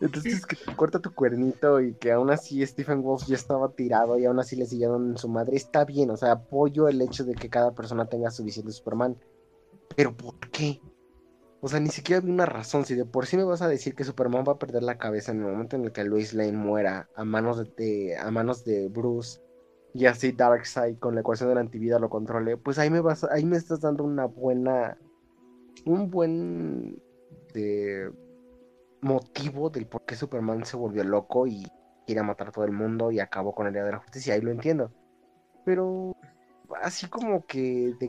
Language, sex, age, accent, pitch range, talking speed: Spanish, male, 20-39, Mexican, 115-140 Hz, 220 wpm